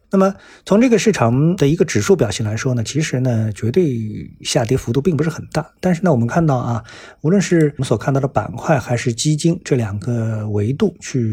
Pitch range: 110-150 Hz